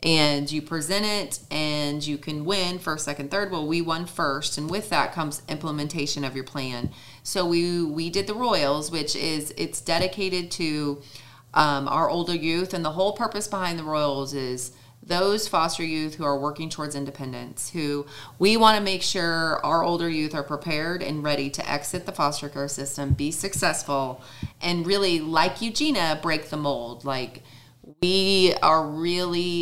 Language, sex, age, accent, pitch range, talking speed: English, female, 30-49, American, 145-175 Hz, 175 wpm